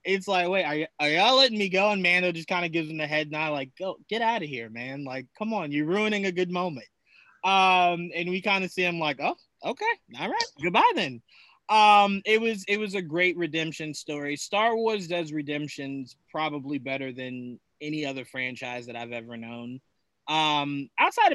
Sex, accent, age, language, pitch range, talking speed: male, American, 20-39, English, 145-190 Hz, 210 wpm